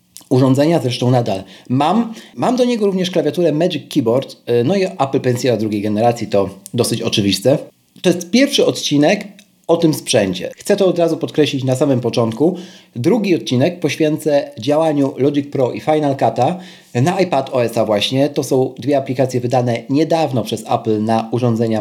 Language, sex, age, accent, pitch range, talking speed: Polish, male, 40-59, native, 115-160 Hz, 160 wpm